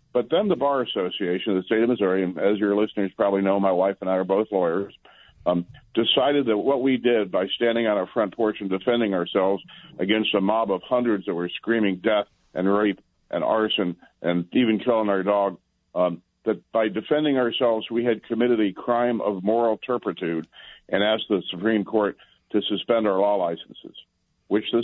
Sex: male